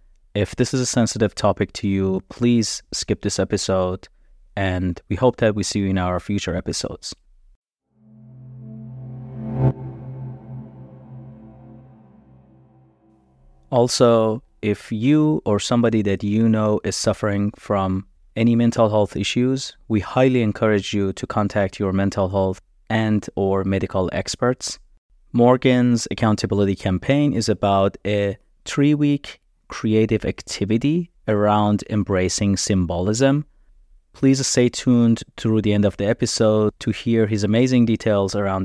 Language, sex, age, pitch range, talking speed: English, male, 30-49, 100-125 Hz, 120 wpm